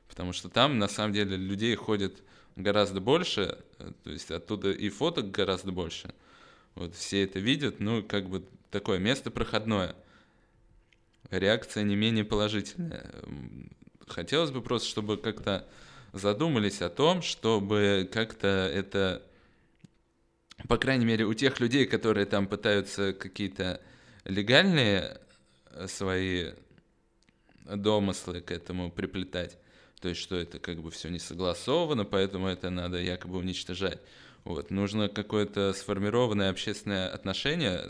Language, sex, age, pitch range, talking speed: Russian, male, 20-39, 95-110 Hz, 125 wpm